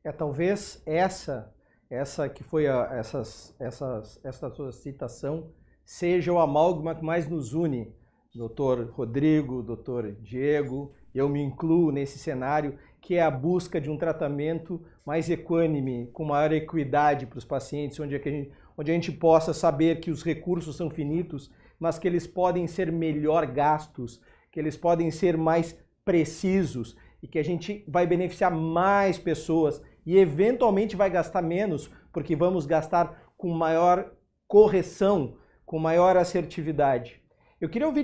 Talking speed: 150 wpm